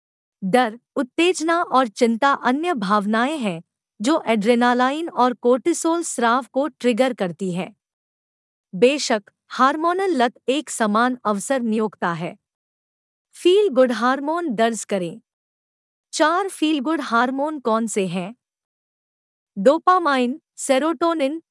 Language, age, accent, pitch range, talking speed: Hindi, 50-69, native, 225-310 Hz, 105 wpm